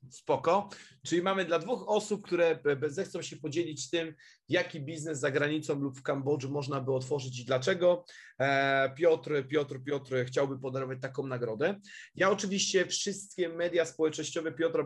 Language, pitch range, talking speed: Polish, 140-160 Hz, 145 wpm